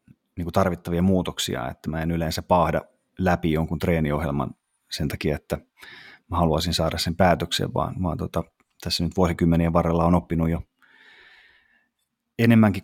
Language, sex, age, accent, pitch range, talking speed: Finnish, male, 30-49, native, 85-110 Hz, 145 wpm